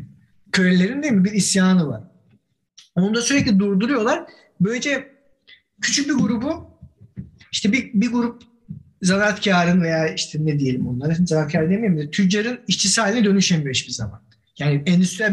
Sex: male